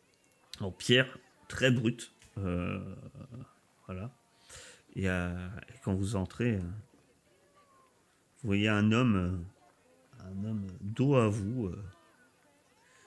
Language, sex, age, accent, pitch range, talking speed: French, male, 40-59, French, 100-140 Hz, 100 wpm